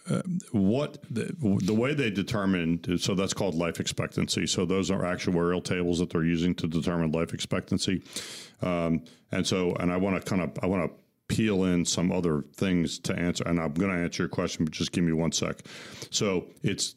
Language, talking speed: English, 205 wpm